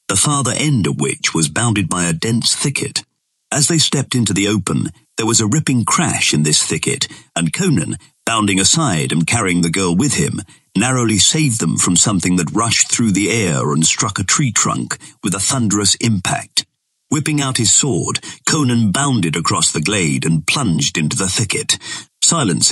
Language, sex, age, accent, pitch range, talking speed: English, male, 50-69, British, 90-130 Hz, 180 wpm